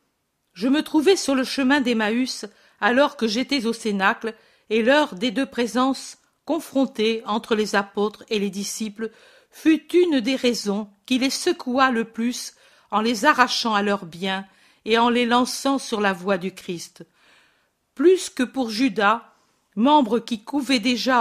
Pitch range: 210-270 Hz